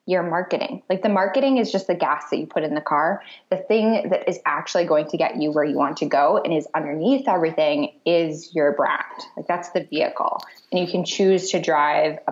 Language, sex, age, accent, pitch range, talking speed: English, female, 10-29, American, 165-220 Hz, 230 wpm